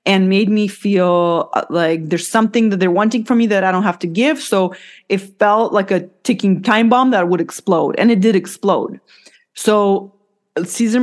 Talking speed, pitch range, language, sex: 190 wpm, 185-240 Hz, English, female